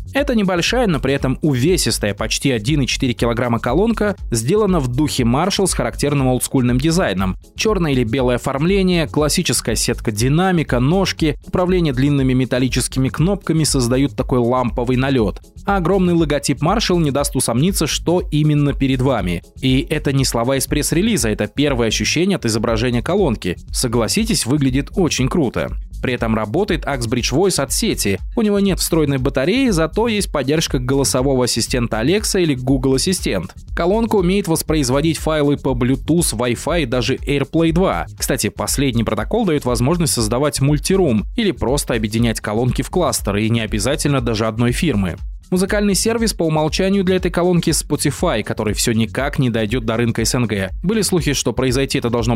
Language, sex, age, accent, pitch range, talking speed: Russian, male, 20-39, native, 120-165 Hz, 155 wpm